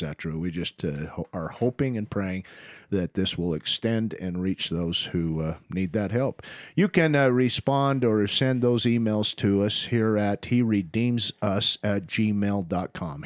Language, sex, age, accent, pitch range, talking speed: English, male, 50-69, American, 100-125 Hz, 165 wpm